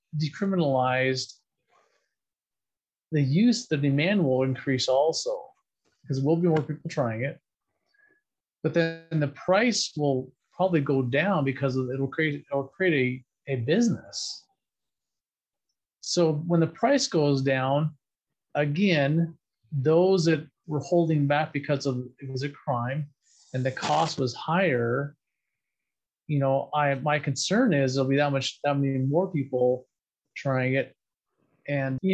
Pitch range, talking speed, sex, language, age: 135-170 Hz, 140 wpm, male, English, 30-49